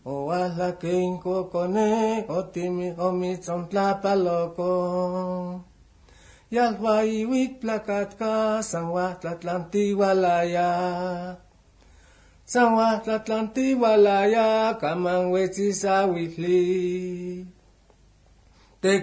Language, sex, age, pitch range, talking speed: Spanish, male, 60-79, 175-205 Hz, 75 wpm